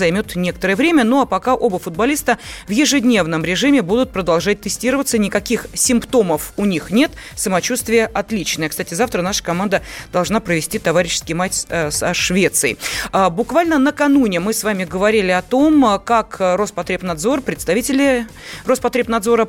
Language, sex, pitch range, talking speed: Russian, female, 190-250 Hz, 130 wpm